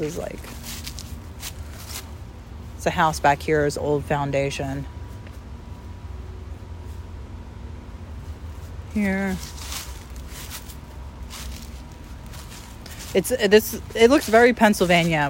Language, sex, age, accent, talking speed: English, female, 30-49, American, 65 wpm